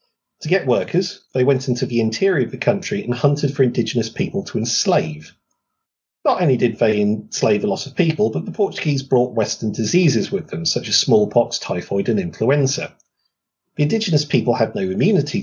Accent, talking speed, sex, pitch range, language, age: British, 185 wpm, male, 125-190 Hz, English, 40-59